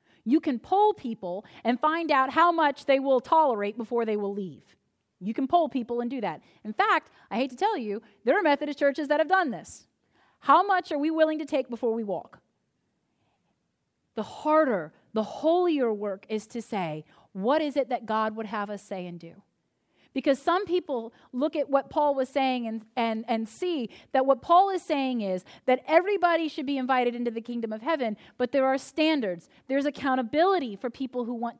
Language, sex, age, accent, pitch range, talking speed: English, female, 30-49, American, 235-315 Hz, 200 wpm